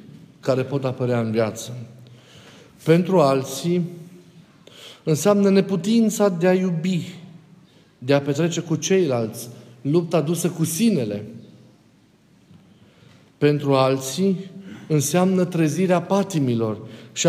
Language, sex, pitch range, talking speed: Romanian, male, 135-180 Hz, 95 wpm